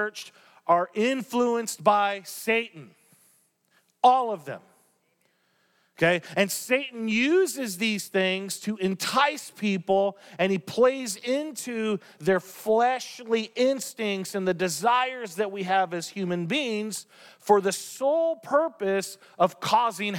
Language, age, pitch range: English, 40-59, 185-270 Hz